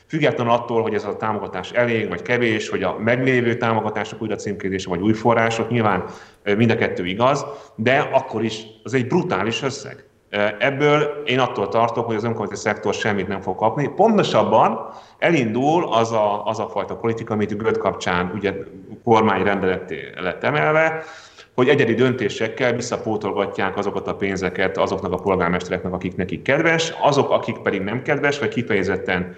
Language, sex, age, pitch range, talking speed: Hungarian, male, 30-49, 100-120 Hz, 155 wpm